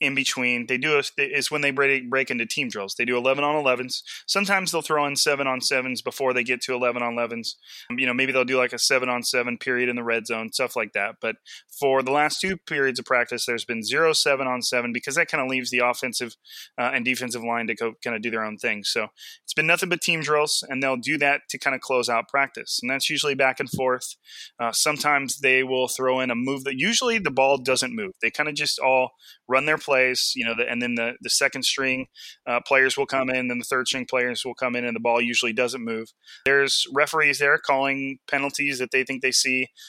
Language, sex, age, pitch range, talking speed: English, male, 20-39, 120-140 Hz, 245 wpm